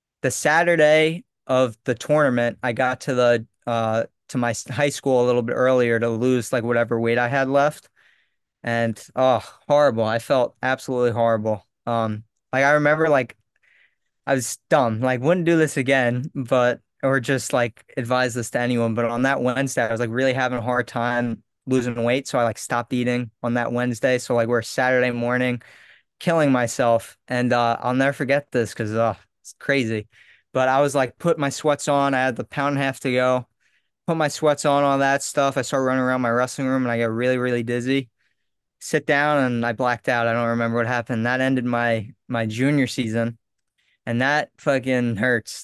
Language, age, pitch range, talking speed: English, 20-39, 120-135 Hz, 195 wpm